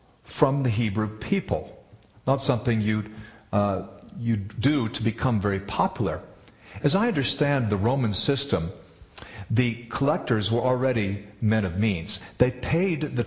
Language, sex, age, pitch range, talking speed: English, male, 50-69, 105-130 Hz, 135 wpm